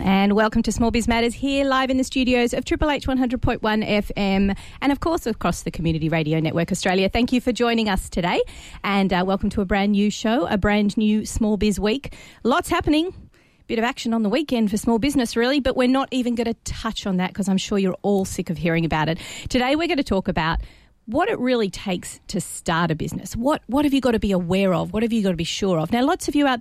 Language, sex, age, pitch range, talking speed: English, female, 40-59, 180-245 Hz, 255 wpm